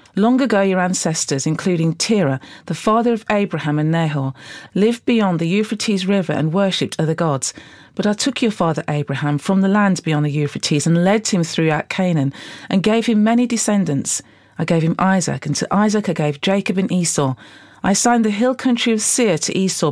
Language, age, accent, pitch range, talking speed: English, 40-59, British, 155-205 Hz, 195 wpm